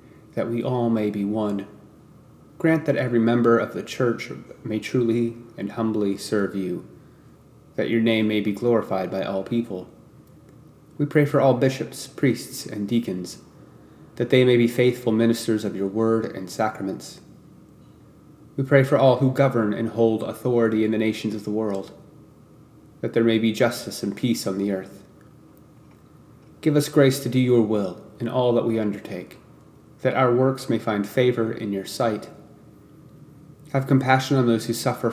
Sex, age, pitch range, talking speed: male, 30-49, 110-135 Hz, 170 wpm